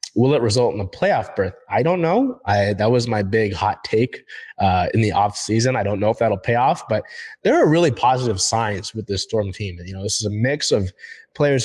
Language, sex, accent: English, male, American